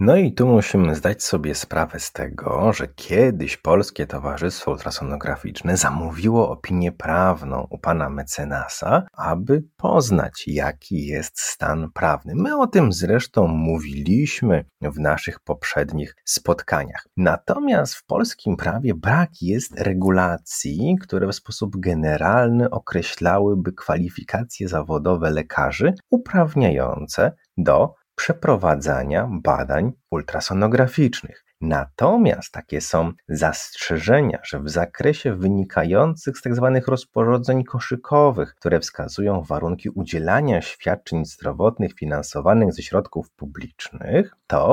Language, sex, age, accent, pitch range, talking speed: Polish, male, 30-49, native, 80-120 Hz, 105 wpm